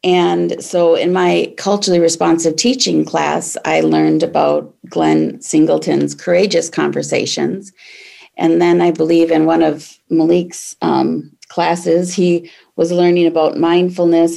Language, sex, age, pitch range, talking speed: English, female, 40-59, 165-195 Hz, 125 wpm